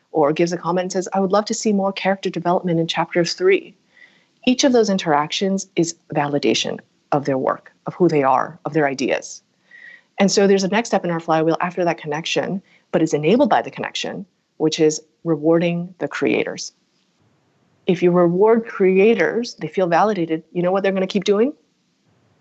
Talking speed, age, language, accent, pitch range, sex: 185 wpm, 30-49, English, American, 155-195 Hz, female